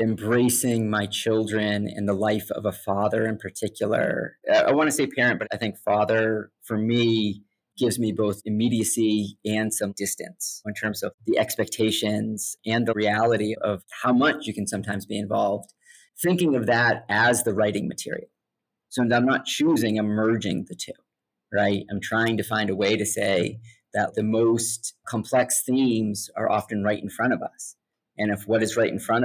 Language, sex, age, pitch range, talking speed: English, male, 30-49, 105-115 Hz, 180 wpm